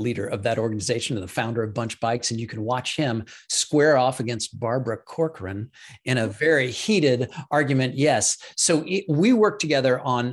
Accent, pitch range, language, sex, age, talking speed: American, 115-145 Hz, English, male, 50-69, 180 wpm